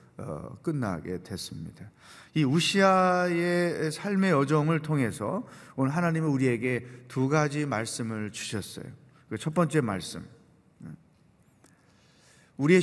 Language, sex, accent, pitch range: Korean, male, native, 130-175 Hz